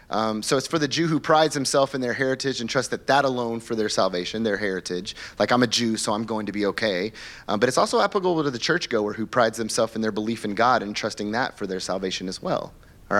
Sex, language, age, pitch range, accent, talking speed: male, English, 30-49, 115-180 Hz, American, 260 wpm